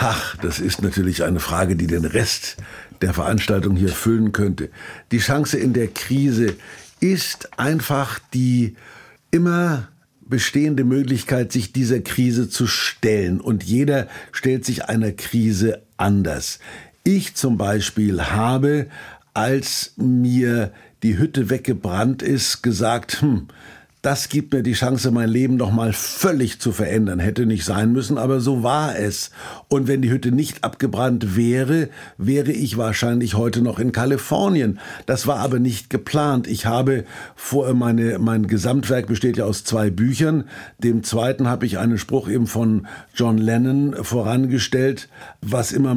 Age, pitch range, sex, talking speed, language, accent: 50-69, 110-135 Hz, male, 145 wpm, German, German